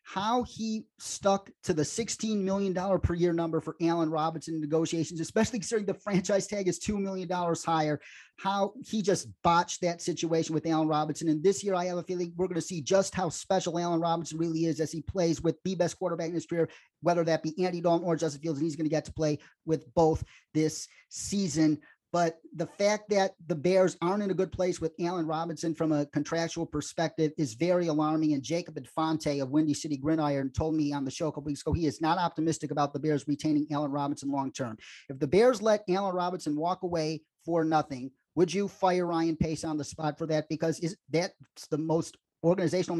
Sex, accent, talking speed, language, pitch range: male, American, 215 wpm, English, 155-180 Hz